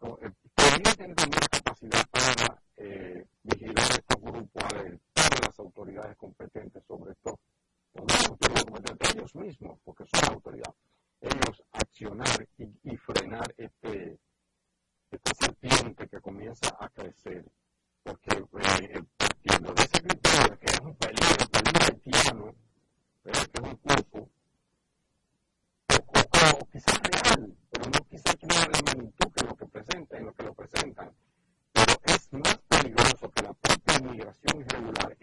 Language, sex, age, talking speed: Spanish, male, 50-69, 135 wpm